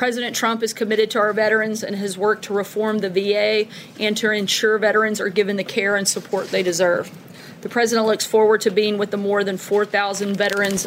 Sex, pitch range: female, 200-220 Hz